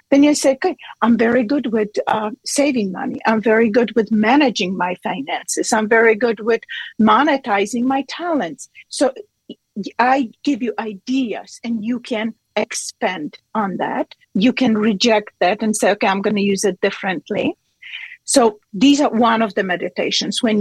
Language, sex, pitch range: English, female, 215-260 Hz